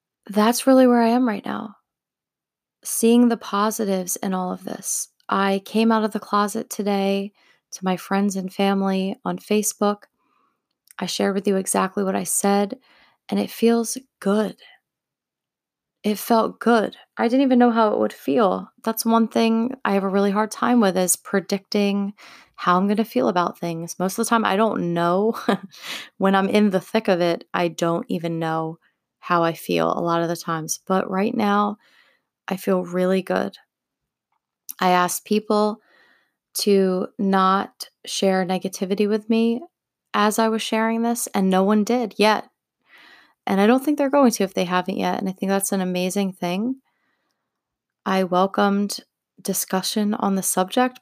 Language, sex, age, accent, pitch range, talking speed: English, female, 20-39, American, 190-225 Hz, 170 wpm